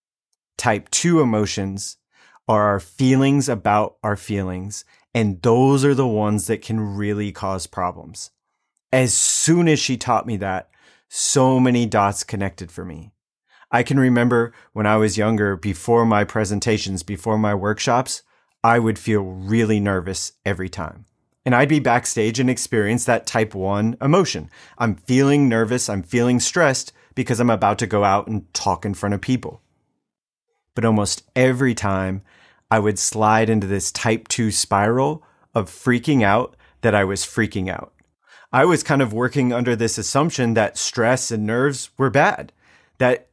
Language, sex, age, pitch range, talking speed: English, male, 30-49, 100-125 Hz, 160 wpm